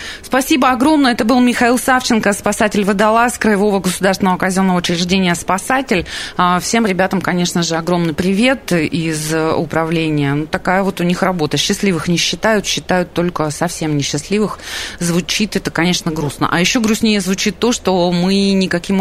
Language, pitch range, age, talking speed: Russian, 170-220 Hz, 20-39, 140 wpm